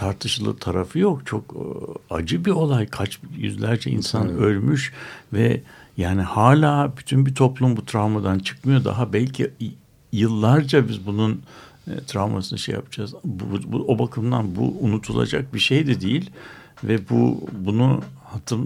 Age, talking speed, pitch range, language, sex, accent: 60-79, 140 wpm, 105-140 Hz, Turkish, male, native